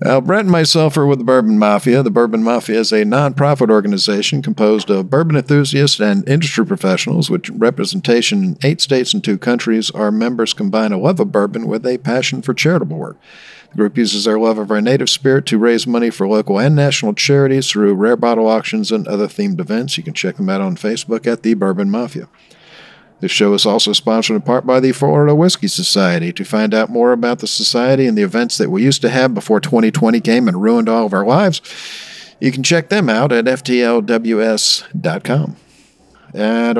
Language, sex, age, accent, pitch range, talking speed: English, male, 50-69, American, 110-145 Hz, 200 wpm